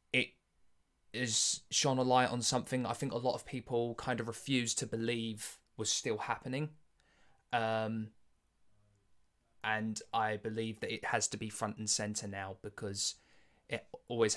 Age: 20-39